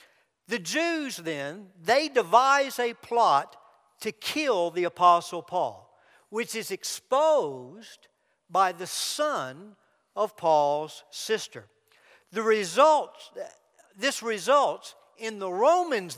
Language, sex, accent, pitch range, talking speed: English, male, American, 185-260 Hz, 105 wpm